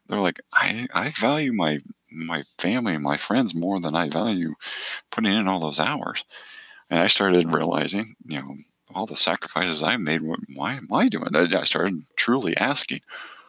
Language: English